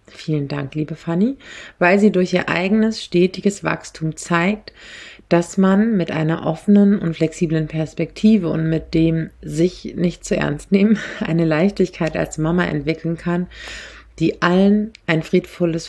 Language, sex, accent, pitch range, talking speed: German, female, German, 165-195 Hz, 130 wpm